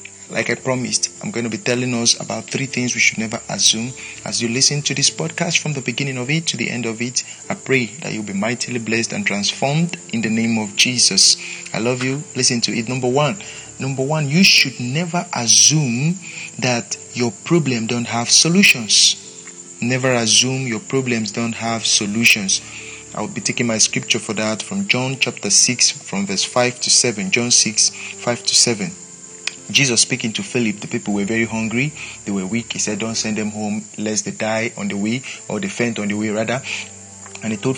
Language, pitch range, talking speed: English, 110-135 Hz, 200 wpm